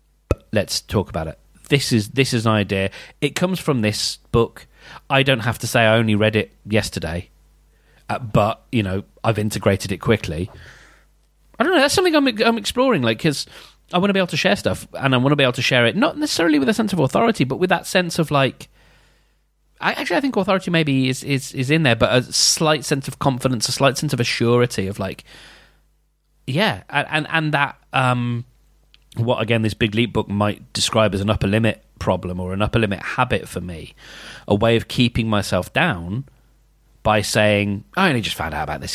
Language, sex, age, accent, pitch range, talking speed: English, male, 30-49, British, 105-145 Hz, 210 wpm